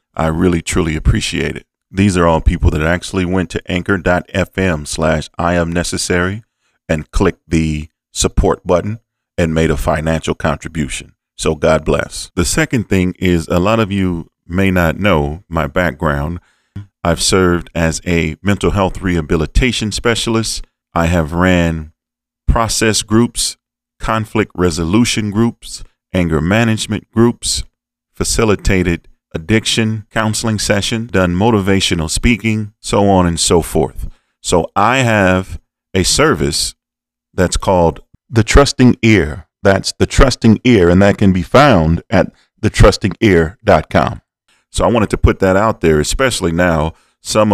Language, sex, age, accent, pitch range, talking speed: English, male, 40-59, American, 85-110 Hz, 135 wpm